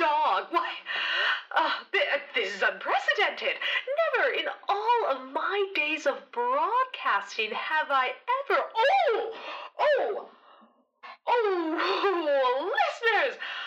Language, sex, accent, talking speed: English, female, American, 90 wpm